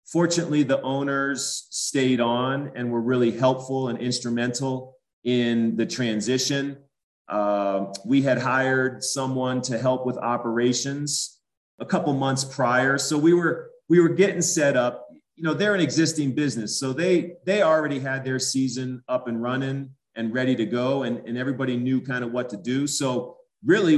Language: English